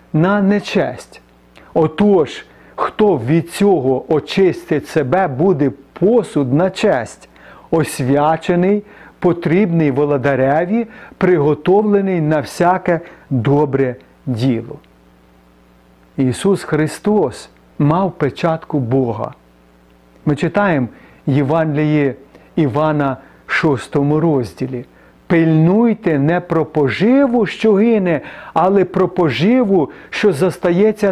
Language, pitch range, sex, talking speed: Ukrainian, 125-180 Hz, male, 80 wpm